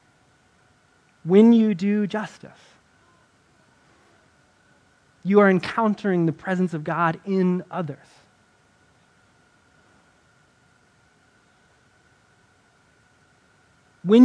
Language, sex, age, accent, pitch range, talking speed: English, male, 20-39, American, 155-195 Hz, 60 wpm